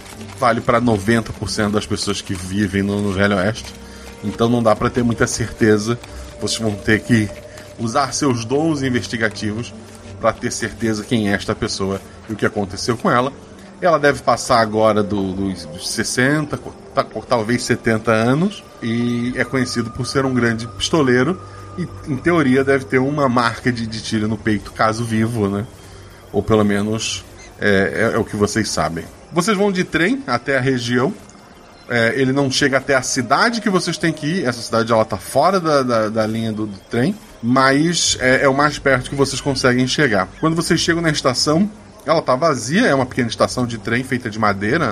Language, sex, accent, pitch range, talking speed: Portuguese, male, Brazilian, 105-130 Hz, 185 wpm